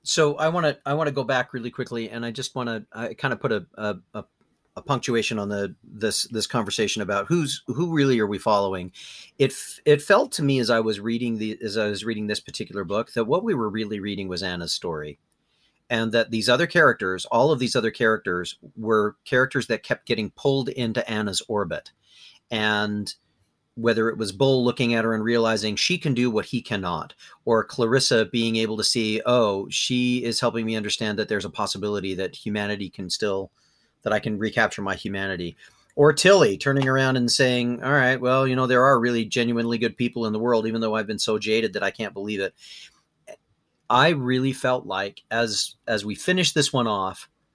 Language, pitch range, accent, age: English, 105-125 Hz, American, 40-59